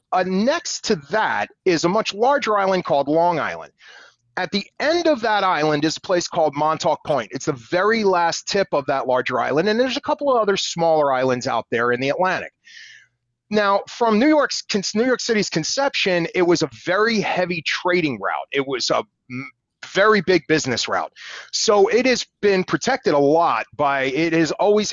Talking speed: 195 wpm